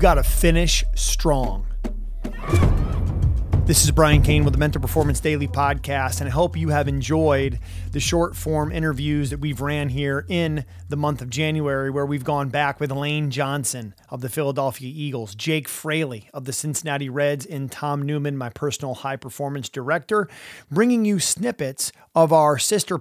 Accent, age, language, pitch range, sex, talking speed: American, 30-49, English, 130-160 Hz, male, 170 wpm